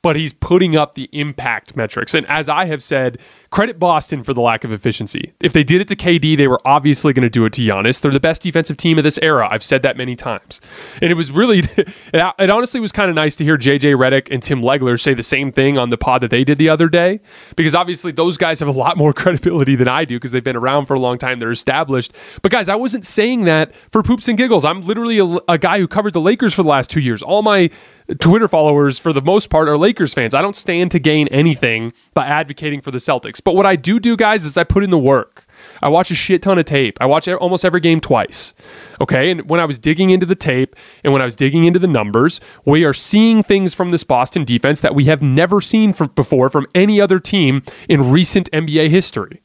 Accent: American